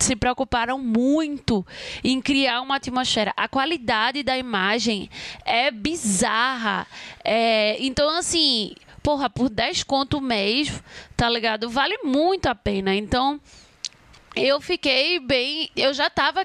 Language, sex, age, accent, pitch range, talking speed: Portuguese, female, 20-39, Brazilian, 225-275 Hz, 120 wpm